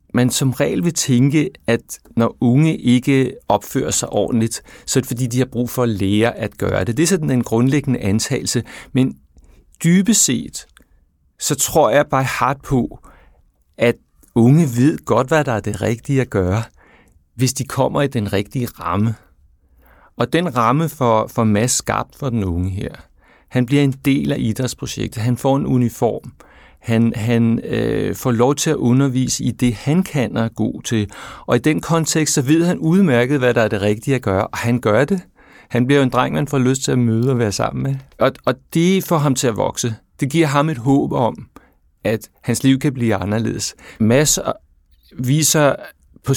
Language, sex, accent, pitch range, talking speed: Danish, male, native, 110-140 Hz, 195 wpm